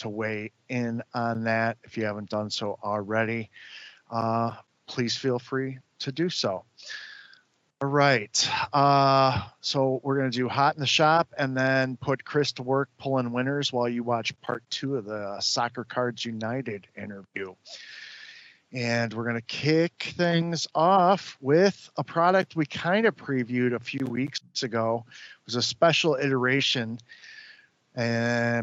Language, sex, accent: English, male, American